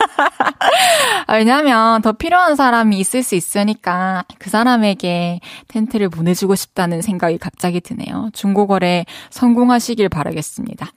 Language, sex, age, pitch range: Korean, female, 20-39, 185-260 Hz